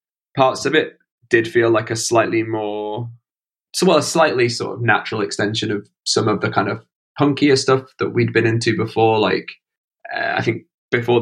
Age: 20-39